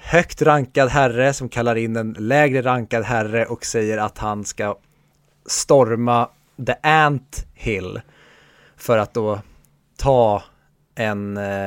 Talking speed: 125 wpm